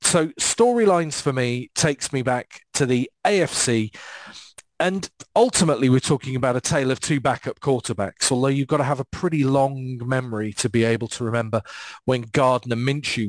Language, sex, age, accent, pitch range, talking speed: English, male, 40-59, British, 115-145 Hz, 170 wpm